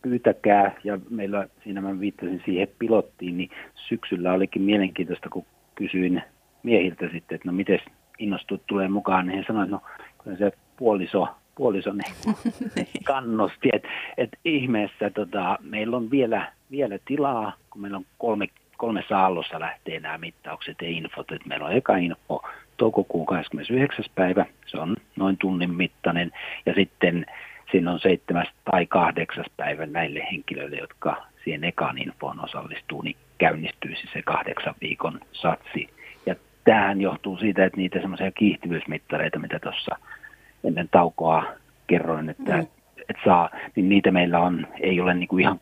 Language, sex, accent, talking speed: Finnish, male, native, 145 wpm